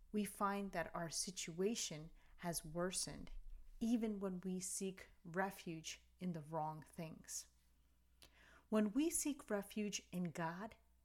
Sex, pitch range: female, 165-210 Hz